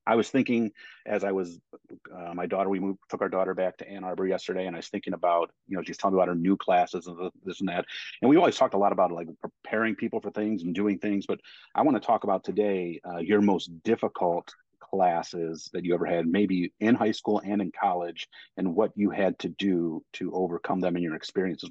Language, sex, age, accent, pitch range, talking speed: English, male, 40-59, American, 90-100 Hz, 240 wpm